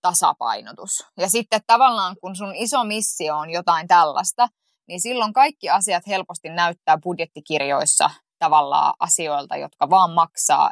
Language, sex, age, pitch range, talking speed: Finnish, female, 20-39, 170-215 Hz, 130 wpm